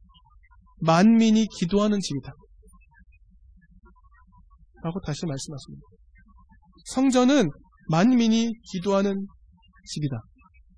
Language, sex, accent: Korean, male, native